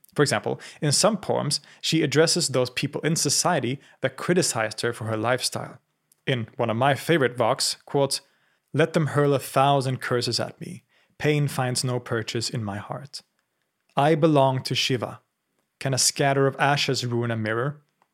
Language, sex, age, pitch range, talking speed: English, male, 30-49, 120-155 Hz, 170 wpm